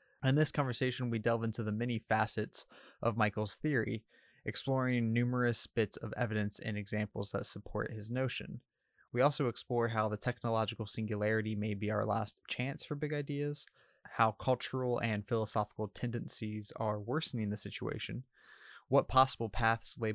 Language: English